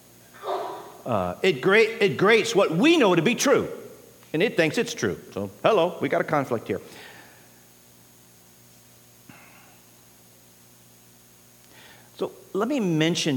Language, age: English, 50-69